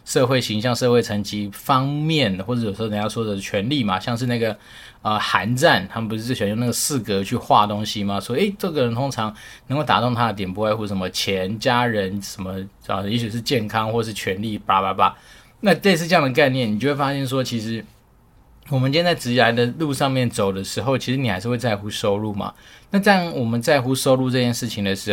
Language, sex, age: Chinese, male, 20-39